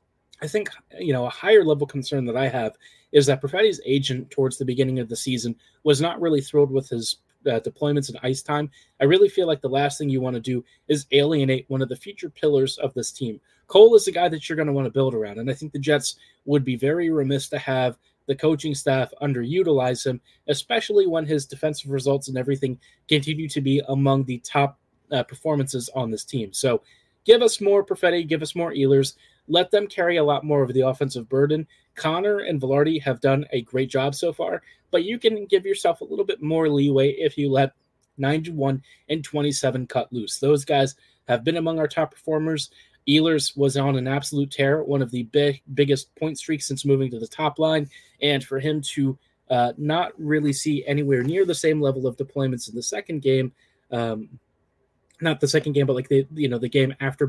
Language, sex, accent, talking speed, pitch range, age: English, male, American, 215 wpm, 130-155 Hz, 20-39